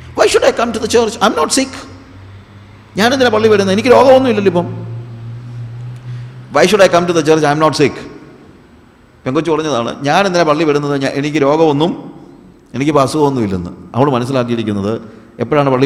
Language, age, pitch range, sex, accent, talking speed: Malayalam, 50-69, 110-145 Hz, male, native, 210 wpm